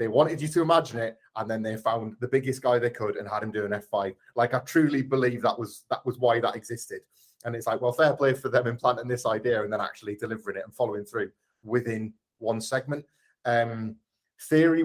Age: 30-49